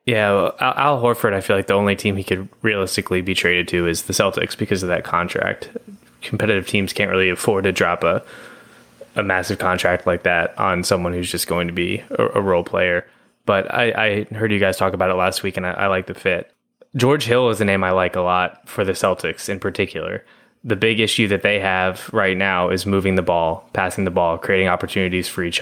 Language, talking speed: English, 225 wpm